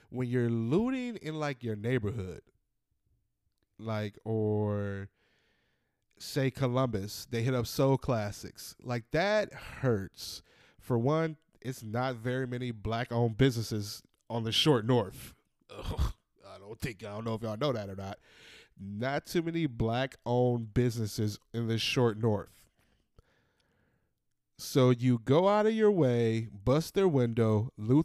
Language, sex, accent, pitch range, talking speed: English, male, American, 110-145 Hz, 135 wpm